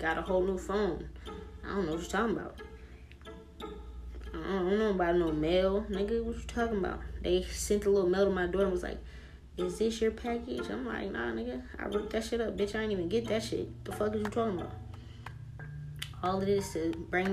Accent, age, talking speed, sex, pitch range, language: American, 20-39, 230 wpm, female, 160-205 Hz, English